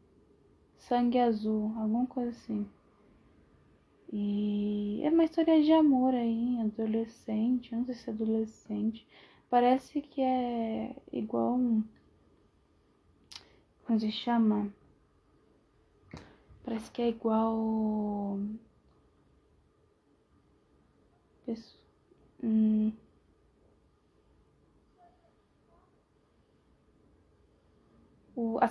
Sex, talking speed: female, 65 wpm